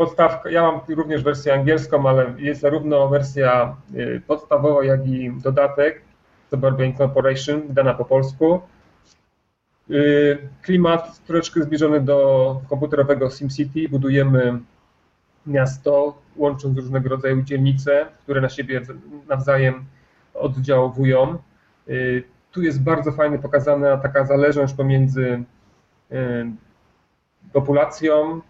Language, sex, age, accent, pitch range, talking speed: Polish, male, 30-49, native, 130-145 Hz, 95 wpm